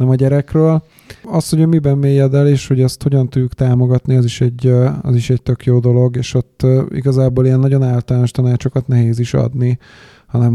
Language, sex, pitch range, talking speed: Hungarian, male, 120-140 Hz, 190 wpm